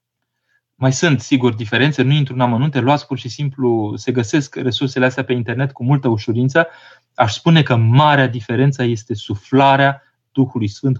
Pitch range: 120-140 Hz